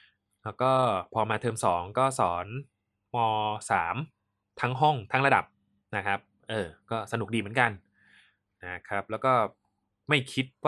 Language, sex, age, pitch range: Thai, male, 20-39, 100-120 Hz